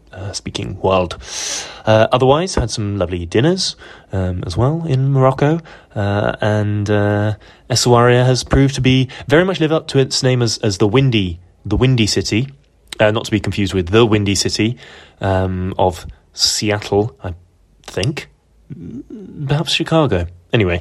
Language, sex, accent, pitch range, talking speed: English, male, British, 100-135 Hz, 155 wpm